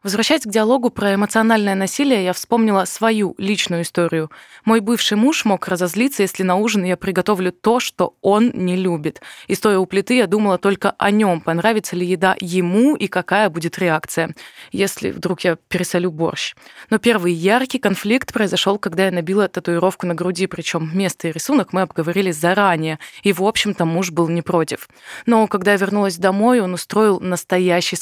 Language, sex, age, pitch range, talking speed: Russian, female, 20-39, 180-215 Hz, 175 wpm